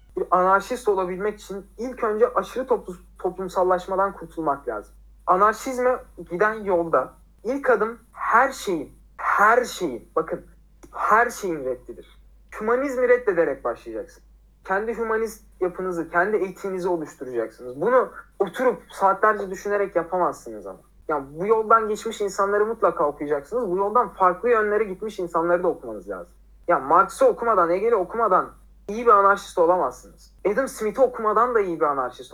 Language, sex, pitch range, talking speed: Turkish, male, 180-240 Hz, 130 wpm